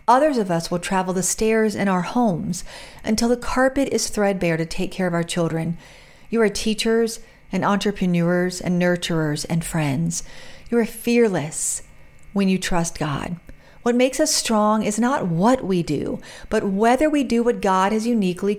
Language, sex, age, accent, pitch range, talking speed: English, female, 40-59, American, 180-230 Hz, 175 wpm